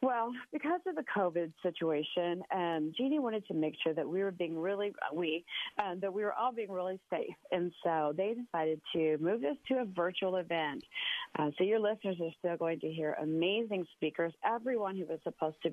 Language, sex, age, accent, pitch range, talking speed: English, female, 40-59, American, 155-195 Hz, 205 wpm